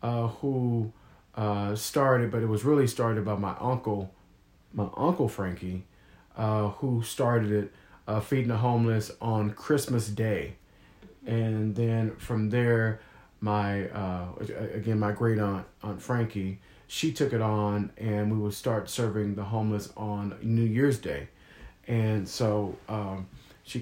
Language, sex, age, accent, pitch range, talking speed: English, male, 40-59, American, 105-125 Hz, 145 wpm